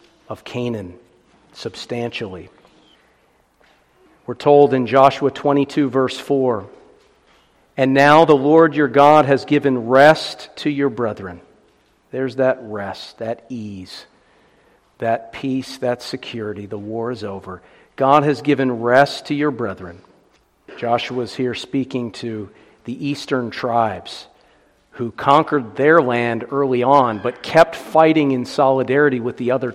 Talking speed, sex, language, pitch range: 125 wpm, male, English, 115-140 Hz